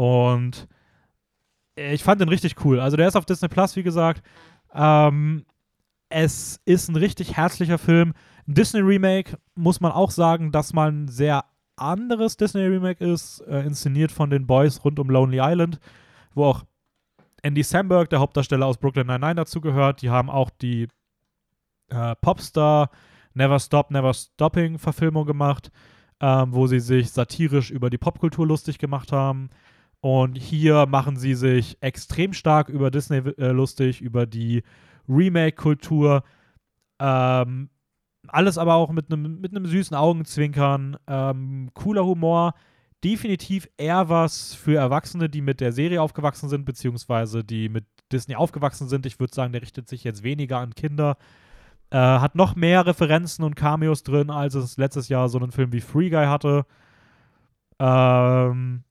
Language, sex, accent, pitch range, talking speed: German, male, German, 130-165 Hz, 145 wpm